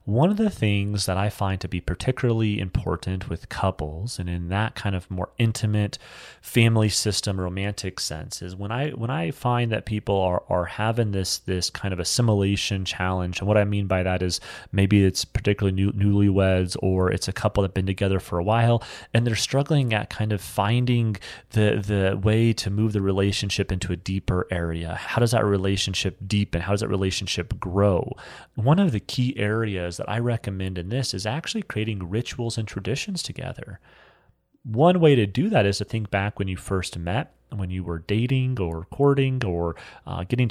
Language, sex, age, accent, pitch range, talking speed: English, male, 30-49, American, 95-120 Hz, 195 wpm